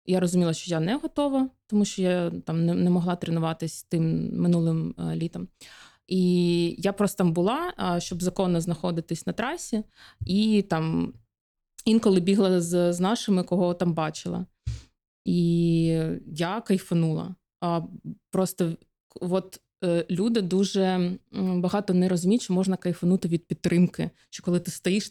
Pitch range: 170-195 Hz